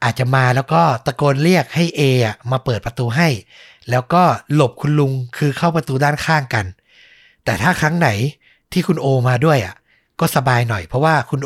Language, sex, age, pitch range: Thai, male, 60-79, 120-155 Hz